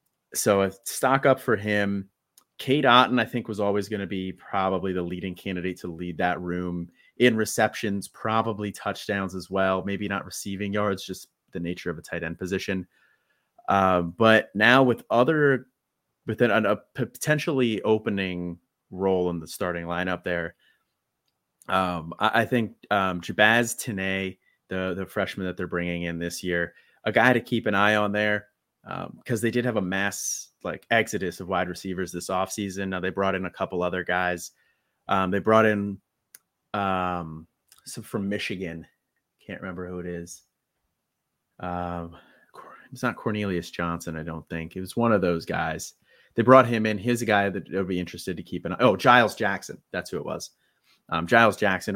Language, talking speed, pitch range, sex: English, 180 wpm, 90-105 Hz, male